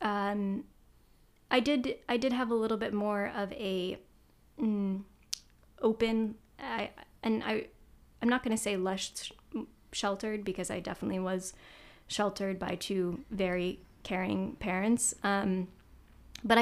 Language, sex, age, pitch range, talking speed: English, female, 20-39, 190-225 Hz, 130 wpm